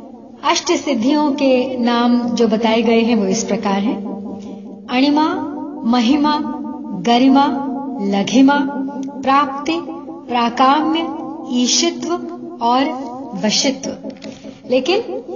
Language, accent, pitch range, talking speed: Hindi, native, 245-290 Hz, 85 wpm